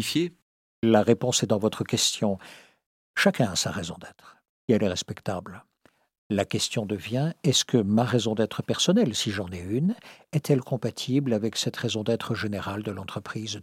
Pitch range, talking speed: 115-160 Hz, 165 wpm